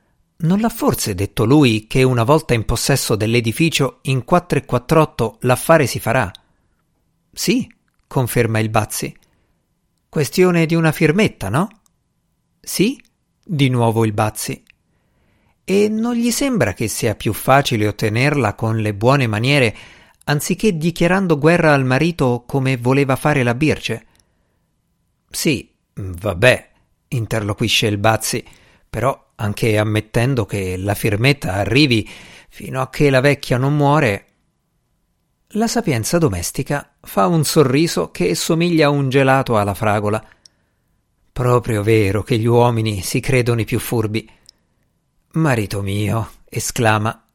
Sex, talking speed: male, 125 wpm